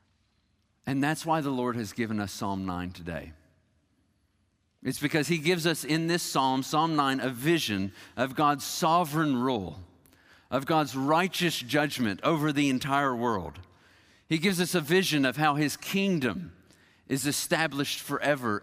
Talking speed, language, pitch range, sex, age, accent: 150 wpm, English, 105-165 Hz, male, 50-69, American